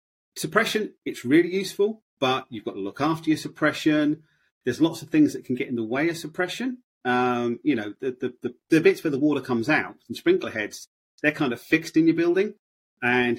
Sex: male